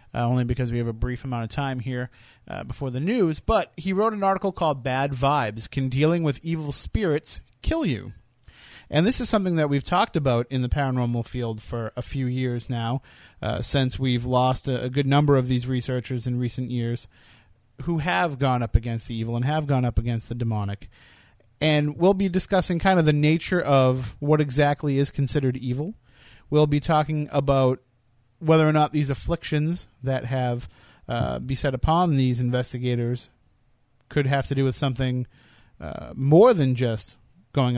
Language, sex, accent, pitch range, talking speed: English, male, American, 120-145 Hz, 185 wpm